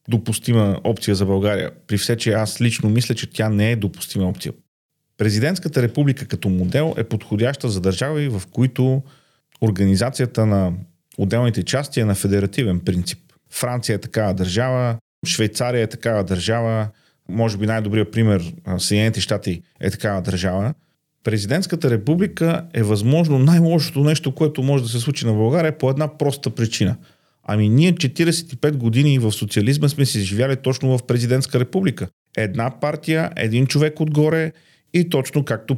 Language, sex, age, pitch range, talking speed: Bulgarian, male, 40-59, 110-145 Hz, 150 wpm